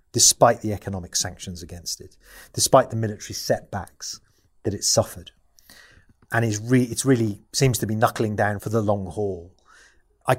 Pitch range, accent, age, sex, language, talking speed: 100-125 Hz, British, 30-49, male, English, 160 wpm